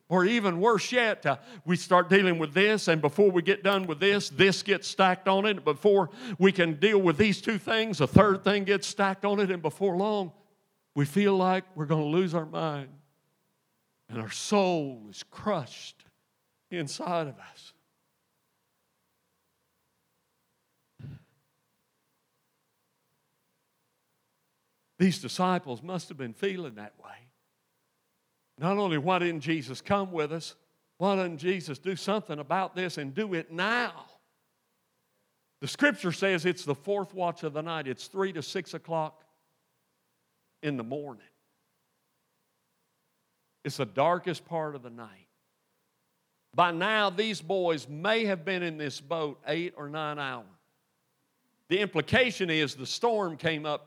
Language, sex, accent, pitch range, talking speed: English, male, American, 155-195 Hz, 145 wpm